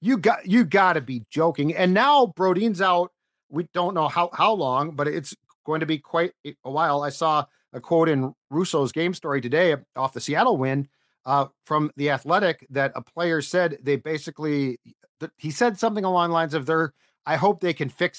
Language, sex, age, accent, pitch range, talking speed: English, male, 40-59, American, 145-185 Hz, 200 wpm